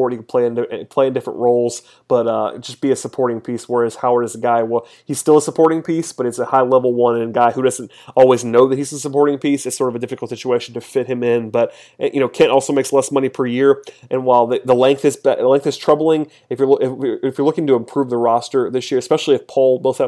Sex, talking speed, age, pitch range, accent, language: male, 270 wpm, 30-49, 125-140 Hz, American, English